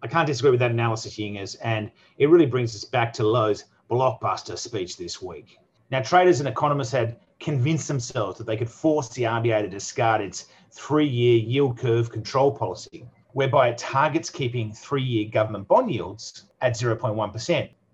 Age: 30-49